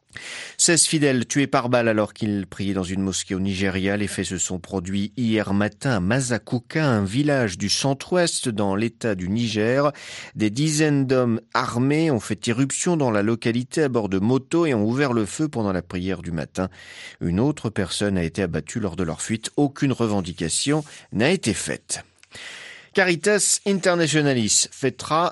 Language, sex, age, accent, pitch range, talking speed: French, male, 40-59, French, 100-150 Hz, 170 wpm